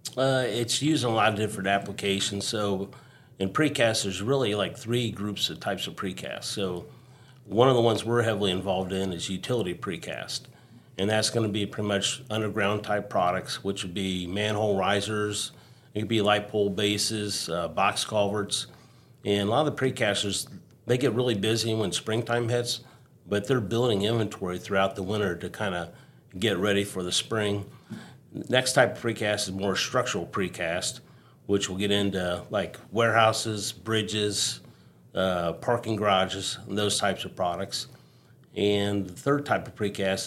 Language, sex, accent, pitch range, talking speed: English, male, American, 100-120 Hz, 170 wpm